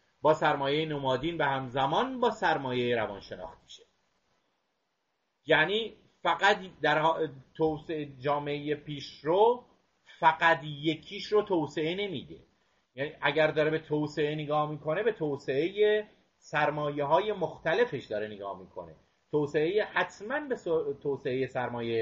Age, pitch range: 30-49, 145-170 Hz